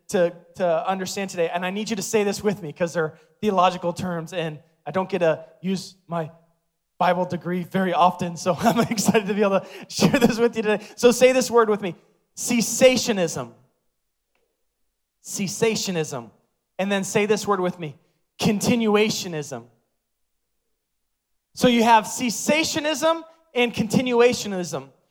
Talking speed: 150 wpm